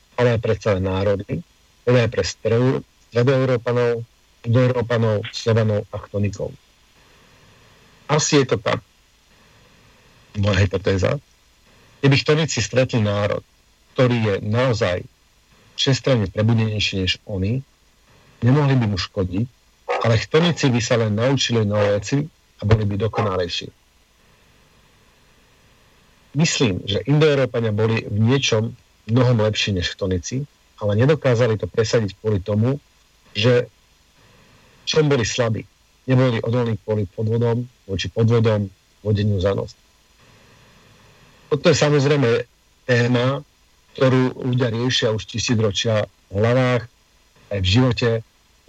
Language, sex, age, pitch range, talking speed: Slovak, male, 50-69, 105-130 Hz, 115 wpm